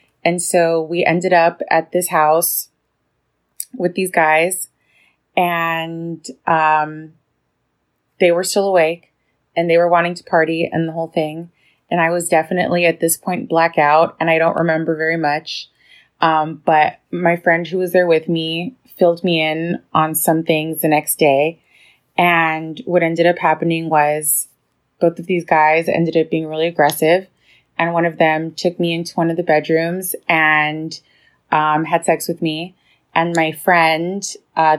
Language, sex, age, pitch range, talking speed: English, female, 20-39, 155-175 Hz, 165 wpm